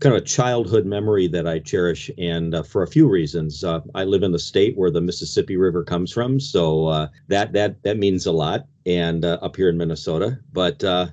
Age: 40-59